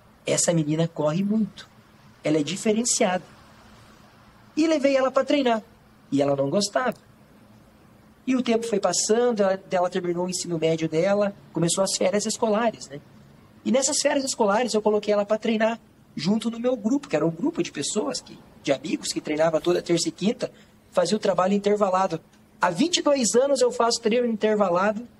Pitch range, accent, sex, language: 165-230 Hz, Brazilian, male, Portuguese